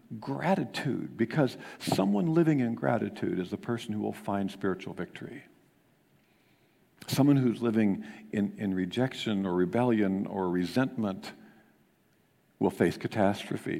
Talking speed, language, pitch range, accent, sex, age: 115 wpm, English, 100-125 Hz, American, male, 50-69